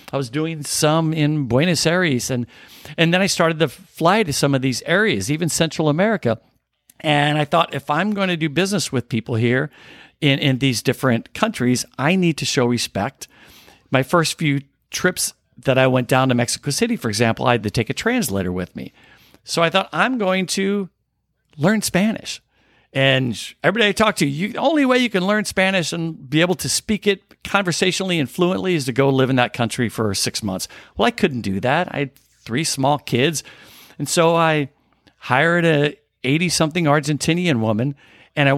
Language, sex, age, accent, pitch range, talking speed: English, male, 50-69, American, 130-180 Hz, 195 wpm